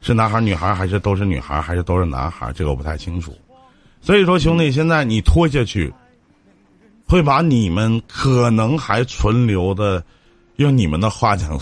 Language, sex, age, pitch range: Chinese, male, 50-69, 85-145 Hz